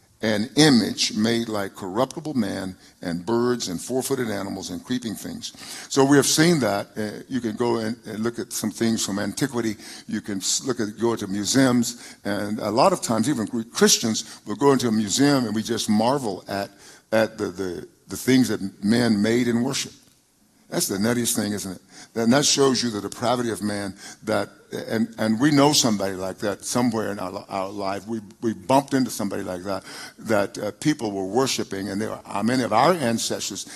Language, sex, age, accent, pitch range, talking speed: English, male, 50-69, American, 105-130 Hz, 205 wpm